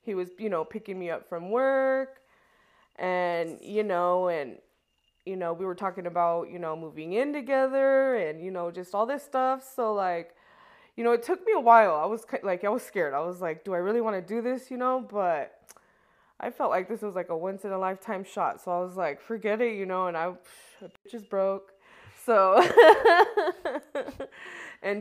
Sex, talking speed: female, 200 wpm